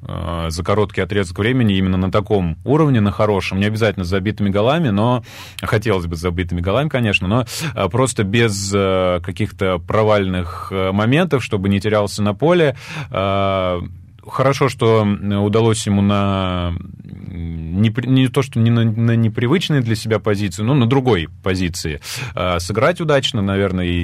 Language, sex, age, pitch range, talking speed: Russian, male, 20-39, 90-115 Hz, 130 wpm